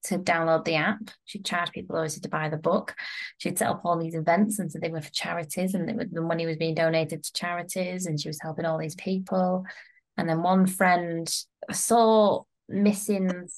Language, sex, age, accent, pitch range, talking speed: English, female, 20-39, British, 160-180 Hz, 210 wpm